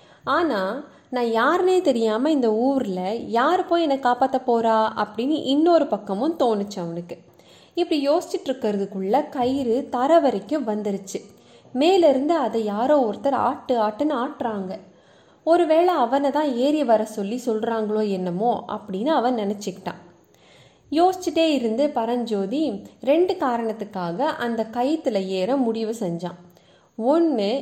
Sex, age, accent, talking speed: female, 20-39, native, 115 wpm